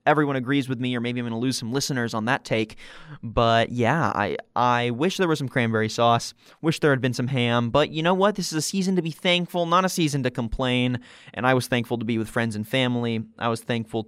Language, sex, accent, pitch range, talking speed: English, male, American, 120-150 Hz, 255 wpm